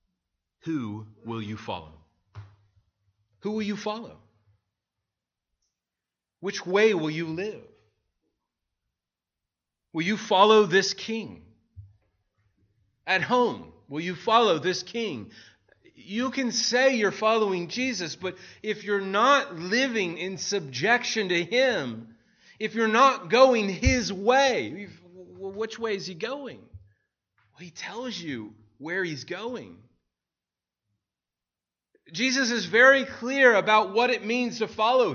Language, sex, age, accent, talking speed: English, male, 30-49, American, 115 wpm